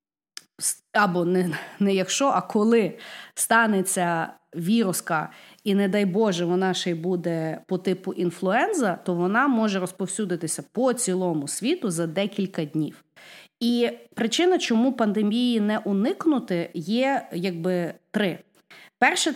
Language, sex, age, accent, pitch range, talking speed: Ukrainian, female, 30-49, native, 180-230 Hz, 120 wpm